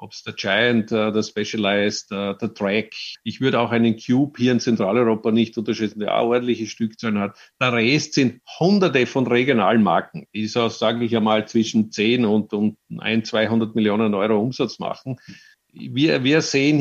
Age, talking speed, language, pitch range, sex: 50-69, 175 wpm, German, 115-130 Hz, male